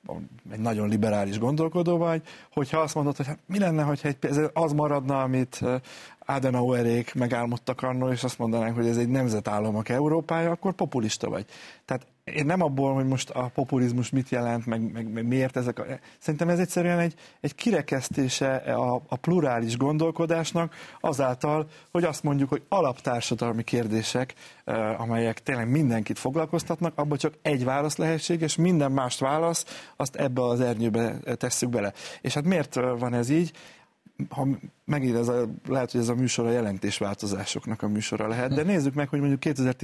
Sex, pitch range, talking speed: male, 115-155 Hz, 160 wpm